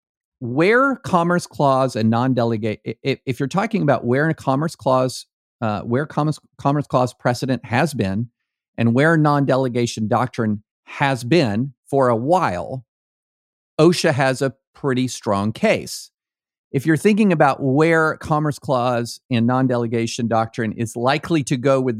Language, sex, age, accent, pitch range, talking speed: English, male, 50-69, American, 115-145 Hz, 135 wpm